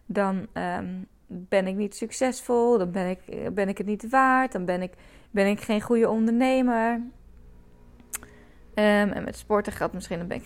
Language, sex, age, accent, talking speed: Dutch, female, 20-39, Dutch, 180 wpm